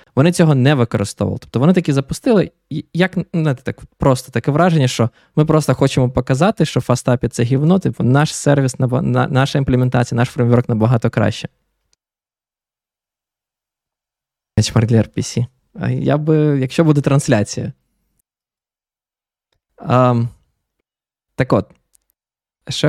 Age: 20-39